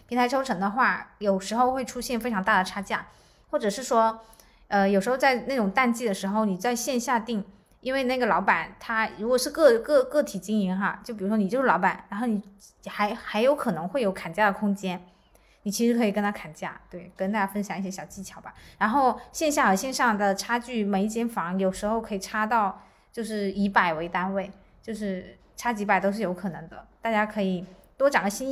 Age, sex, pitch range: 20-39, female, 195-240 Hz